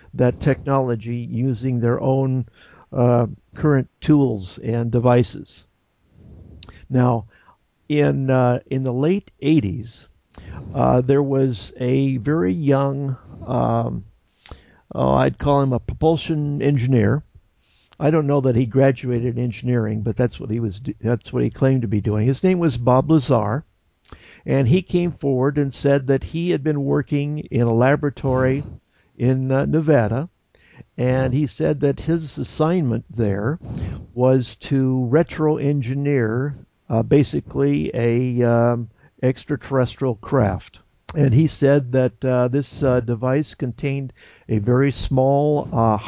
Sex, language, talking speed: male, English, 130 wpm